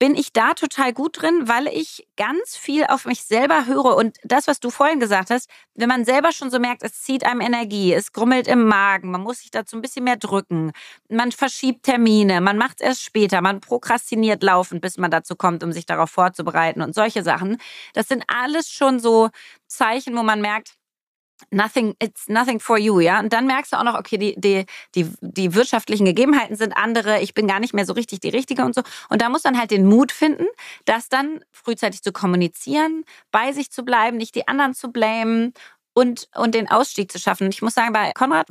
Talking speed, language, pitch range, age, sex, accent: 215 wpm, German, 205-260 Hz, 30-49, female, German